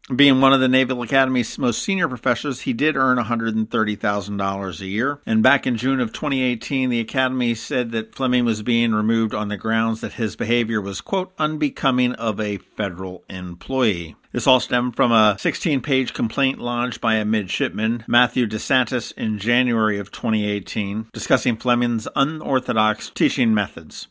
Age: 50-69